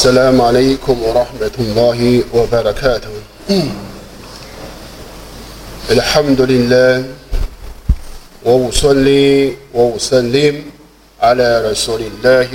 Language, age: Chinese, 50-69